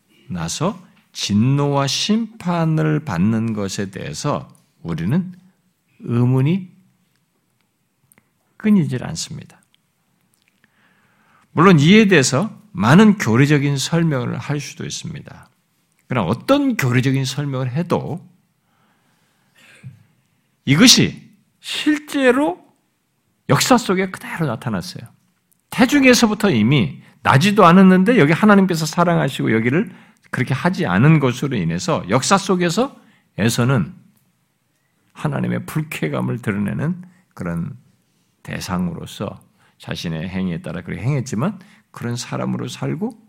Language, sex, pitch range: Korean, male, 130-190 Hz